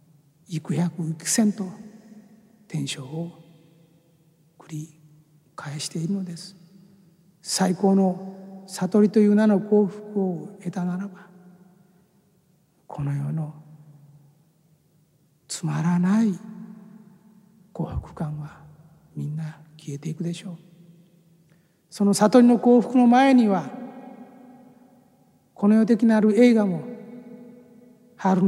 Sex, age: male, 60-79